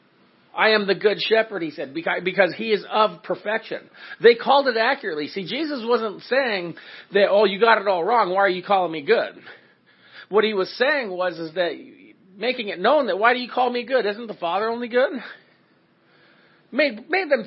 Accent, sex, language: American, male, English